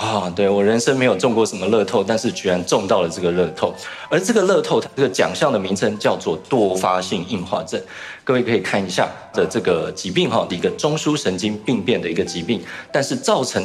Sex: male